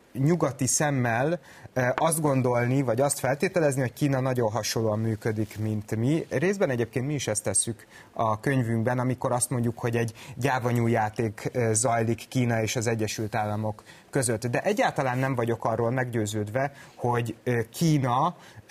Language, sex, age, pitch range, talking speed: Hungarian, male, 30-49, 115-145 Hz, 140 wpm